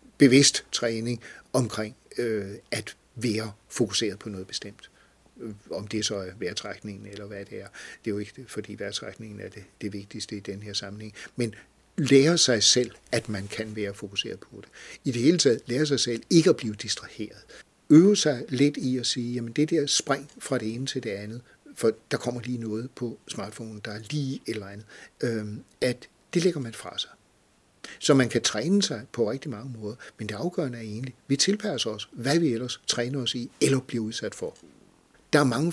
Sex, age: male, 60-79